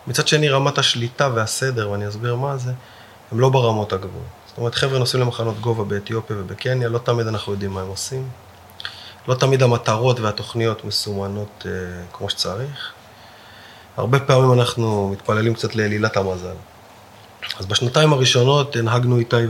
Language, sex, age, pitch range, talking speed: Hebrew, male, 30-49, 105-125 Hz, 150 wpm